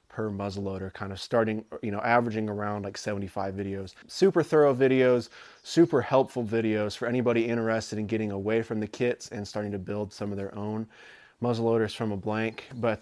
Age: 20-39